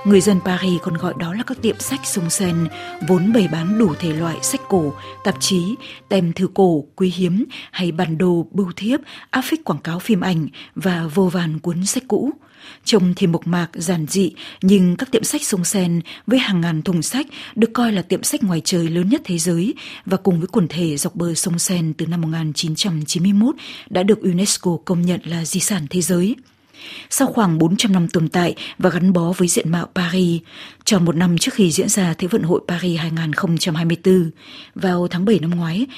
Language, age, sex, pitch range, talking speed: Vietnamese, 20-39, female, 170-205 Hz, 205 wpm